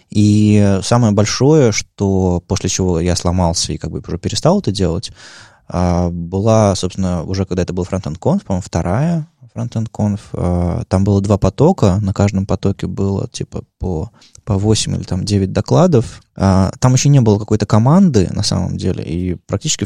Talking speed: 165 wpm